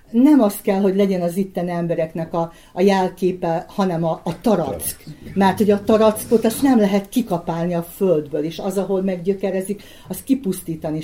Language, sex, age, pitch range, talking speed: Hungarian, female, 50-69, 165-195 Hz, 170 wpm